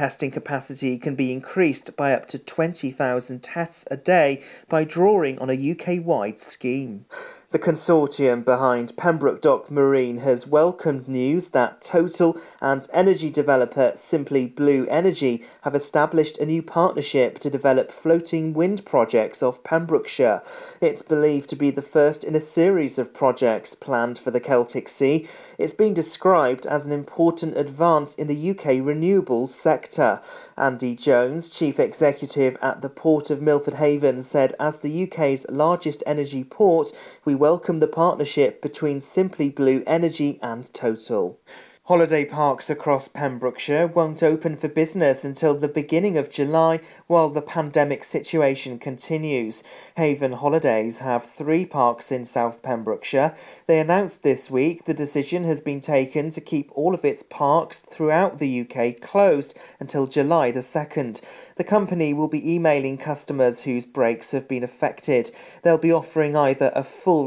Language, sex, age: English, male, 40-59